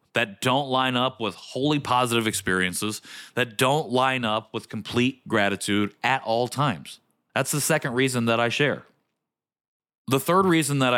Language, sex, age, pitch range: English, male, 30-49, 105-135 Hz